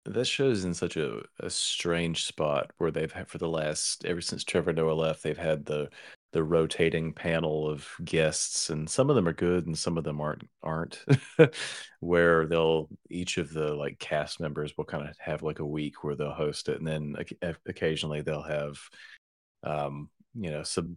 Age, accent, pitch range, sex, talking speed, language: 30-49, American, 75-85 Hz, male, 195 wpm, English